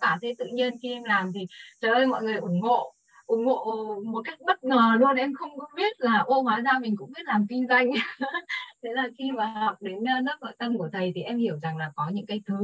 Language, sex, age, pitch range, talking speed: Vietnamese, female, 20-39, 185-245 Hz, 260 wpm